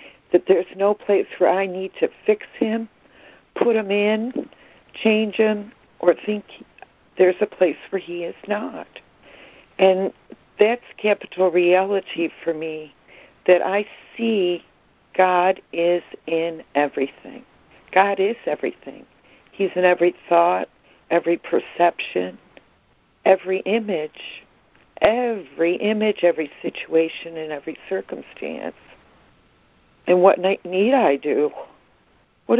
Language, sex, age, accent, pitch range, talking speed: English, female, 60-79, American, 165-205 Hz, 110 wpm